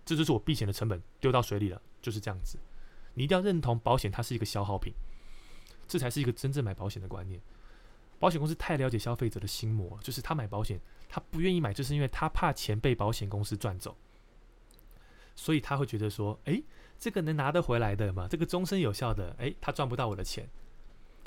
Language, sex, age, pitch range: Chinese, male, 20-39, 105-145 Hz